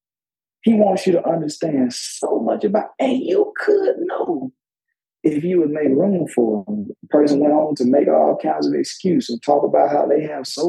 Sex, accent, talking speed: male, American, 195 wpm